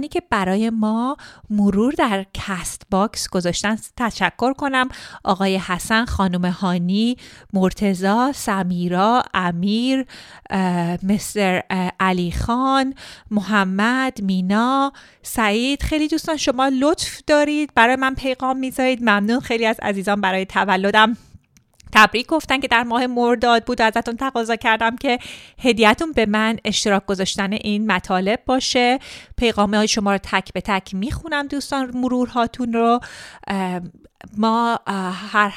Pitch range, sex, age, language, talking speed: 190-245 Hz, female, 30-49, Persian, 125 wpm